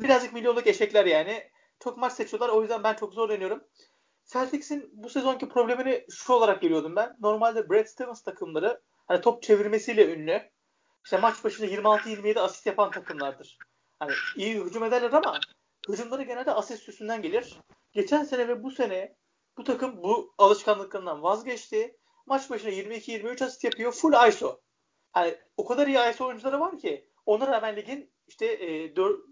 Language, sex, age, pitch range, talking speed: Turkish, male, 40-59, 210-280 Hz, 160 wpm